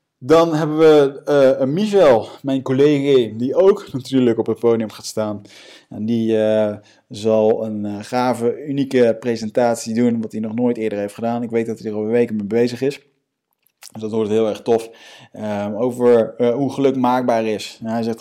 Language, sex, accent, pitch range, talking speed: Dutch, male, Dutch, 110-135 Hz, 190 wpm